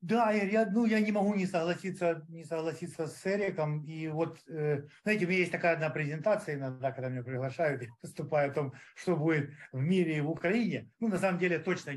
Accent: native